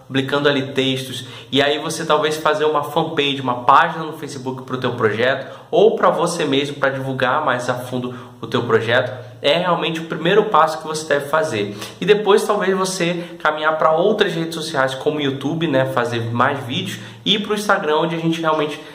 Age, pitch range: 20-39, 135-170 Hz